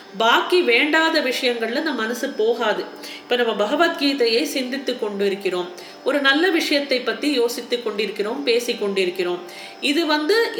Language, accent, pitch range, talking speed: Tamil, native, 225-315 Hz, 125 wpm